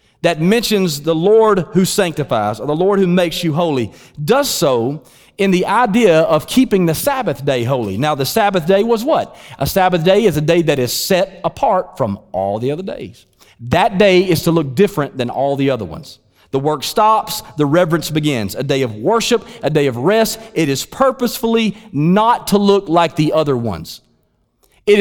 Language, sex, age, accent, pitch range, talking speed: English, male, 40-59, American, 145-205 Hz, 195 wpm